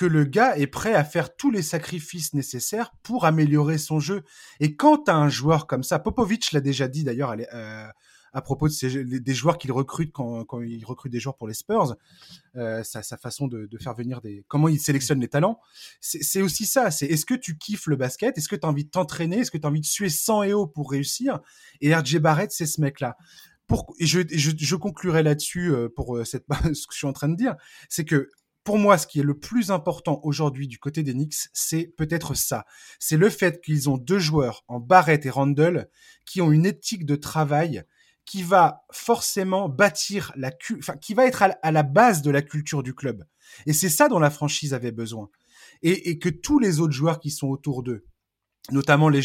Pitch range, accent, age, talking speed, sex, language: 135-180 Hz, French, 20-39, 230 wpm, male, French